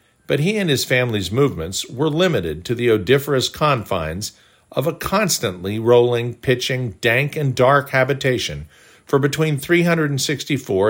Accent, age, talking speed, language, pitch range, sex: American, 50-69, 130 wpm, English, 95-135 Hz, male